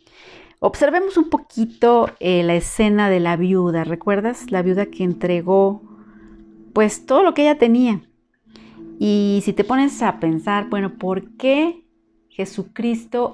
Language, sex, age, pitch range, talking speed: Spanish, female, 40-59, 180-270 Hz, 135 wpm